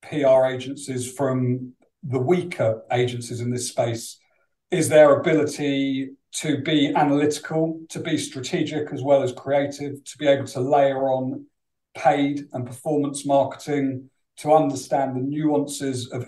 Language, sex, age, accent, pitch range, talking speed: English, male, 50-69, British, 125-145 Hz, 135 wpm